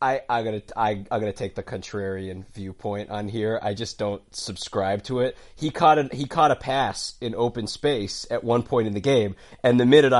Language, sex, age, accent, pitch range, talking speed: English, male, 30-49, American, 100-125 Hz, 220 wpm